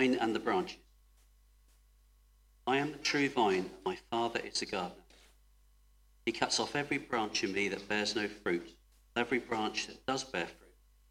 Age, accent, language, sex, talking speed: 50-69, British, English, male, 165 wpm